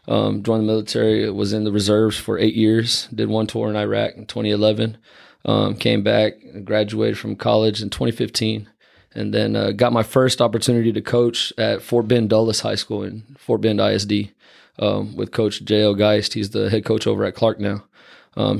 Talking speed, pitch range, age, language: 190 wpm, 105-115 Hz, 20-39, English